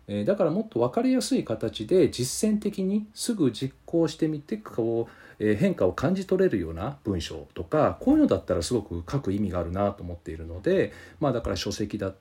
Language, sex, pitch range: Japanese, male, 95-160 Hz